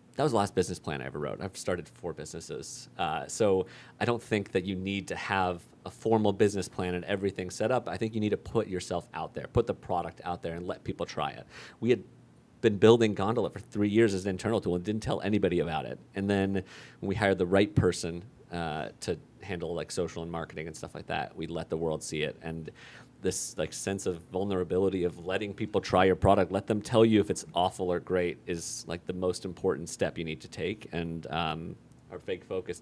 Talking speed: 235 wpm